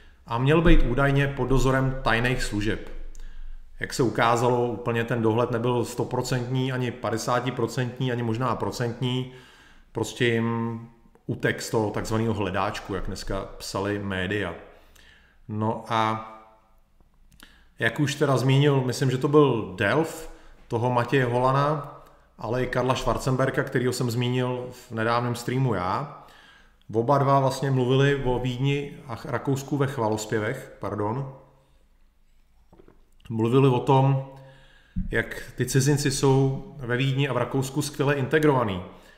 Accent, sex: native, male